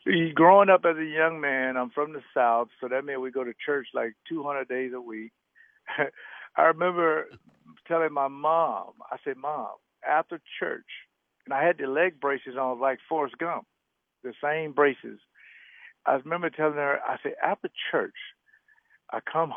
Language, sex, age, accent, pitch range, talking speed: English, male, 60-79, American, 130-165 Hz, 170 wpm